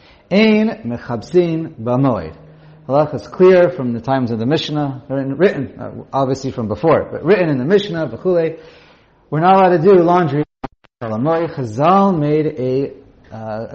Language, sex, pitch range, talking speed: English, male, 115-165 Hz, 135 wpm